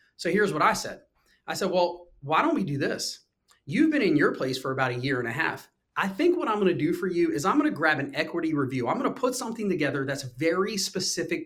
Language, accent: English, American